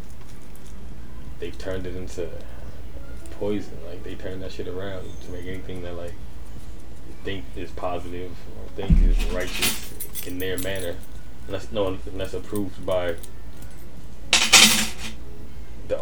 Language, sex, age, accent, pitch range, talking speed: English, male, 20-39, American, 70-95 Hz, 115 wpm